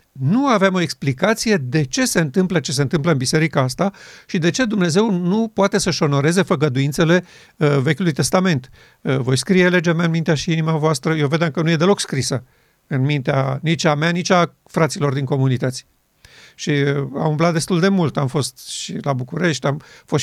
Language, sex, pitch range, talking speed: Romanian, male, 145-180 Hz, 190 wpm